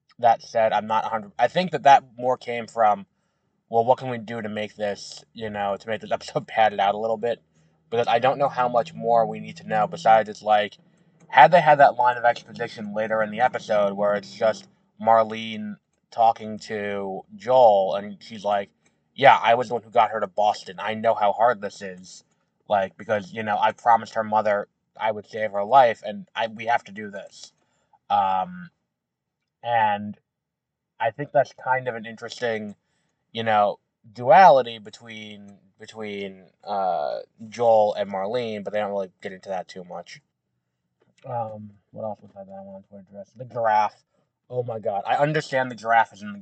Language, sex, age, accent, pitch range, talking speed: English, male, 20-39, American, 100-120 Hz, 195 wpm